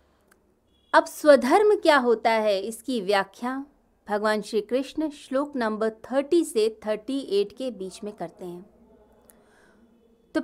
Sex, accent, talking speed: female, native, 120 wpm